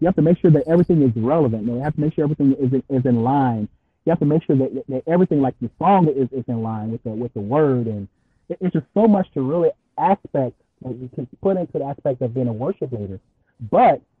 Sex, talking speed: male, 280 wpm